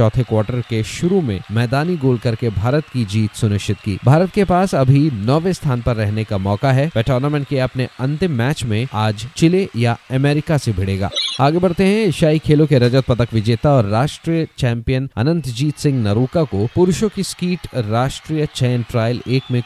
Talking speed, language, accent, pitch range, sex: 190 wpm, Hindi, native, 120-155 Hz, male